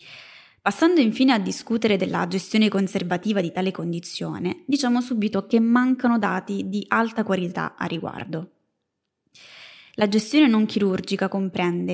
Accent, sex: native, female